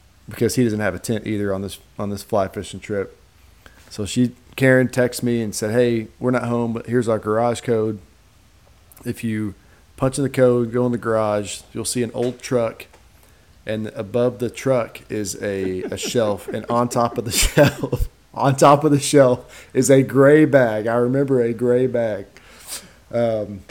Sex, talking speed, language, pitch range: male, 185 wpm, English, 105-125 Hz